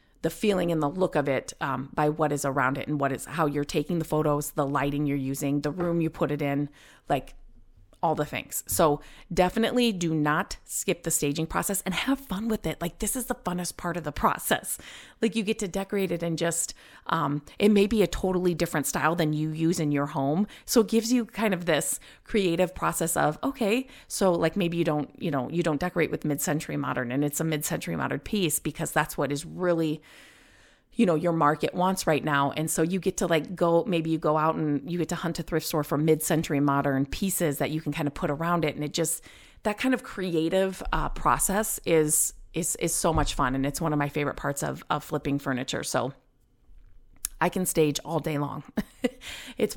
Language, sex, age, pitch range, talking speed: English, female, 30-49, 150-185 Hz, 230 wpm